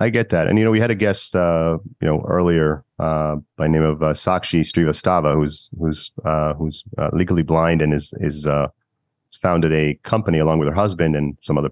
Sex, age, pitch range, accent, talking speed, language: male, 30-49, 80-105 Hz, American, 215 wpm, English